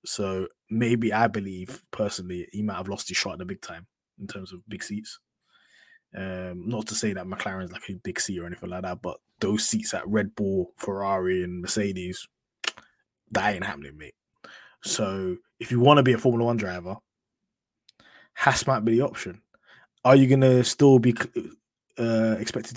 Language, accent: English, British